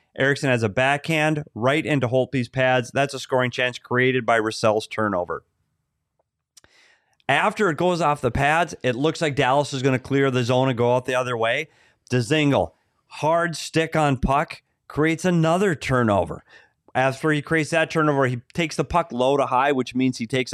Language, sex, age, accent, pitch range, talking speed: English, male, 30-49, American, 120-150 Hz, 180 wpm